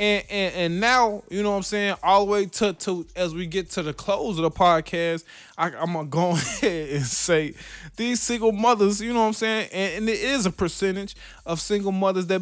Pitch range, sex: 165-220 Hz, male